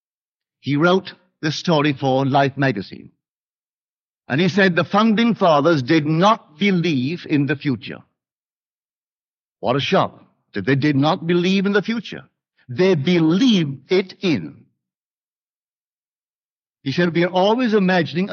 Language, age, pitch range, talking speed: English, 60-79, 145-195 Hz, 130 wpm